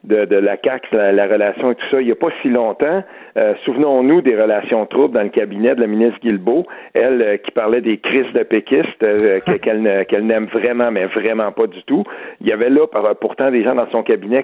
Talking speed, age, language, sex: 235 wpm, 50-69, French, male